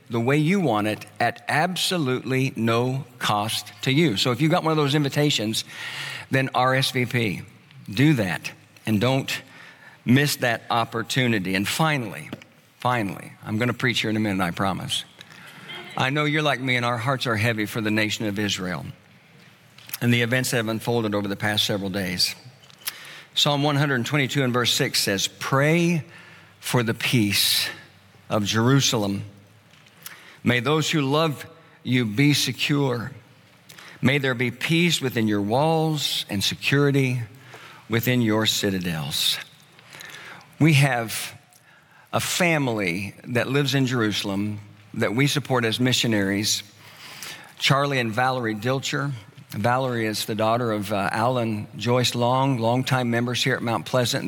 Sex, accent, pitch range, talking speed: male, American, 110-140 Hz, 145 wpm